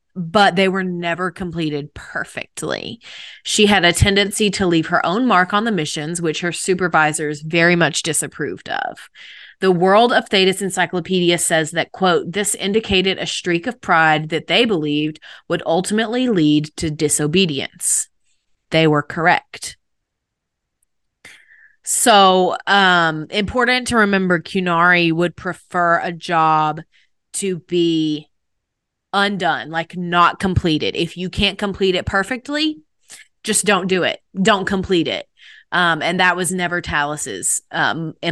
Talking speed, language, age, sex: 135 wpm, English, 20-39, female